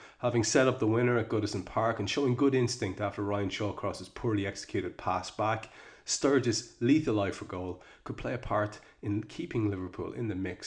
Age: 30-49